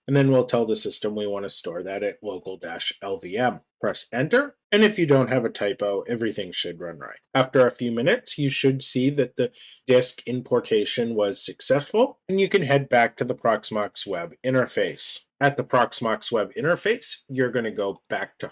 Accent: American